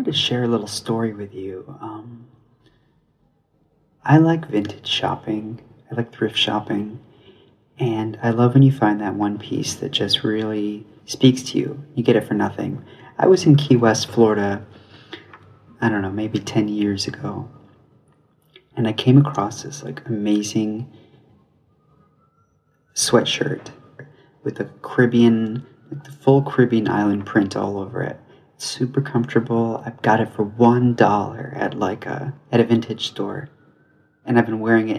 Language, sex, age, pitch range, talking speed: English, male, 30-49, 105-135 Hz, 155 wpm